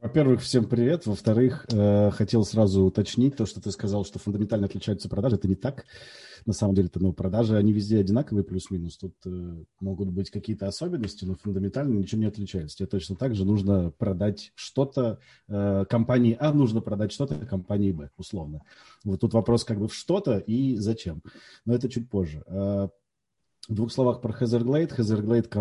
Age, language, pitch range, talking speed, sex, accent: 30-49, Russian, 95-115 Hz, 170 wpm, male, native